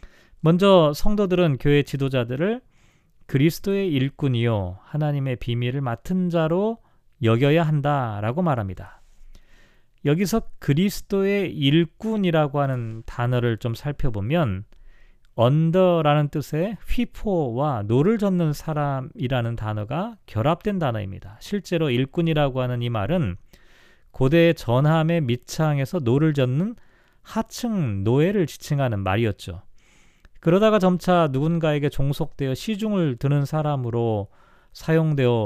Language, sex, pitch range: Korean, male, 125-175 Hz